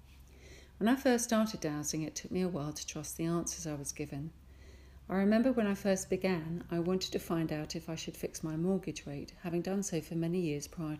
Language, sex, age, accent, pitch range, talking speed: English, female, 50-69, British, 150-185 Hz, 230 wpm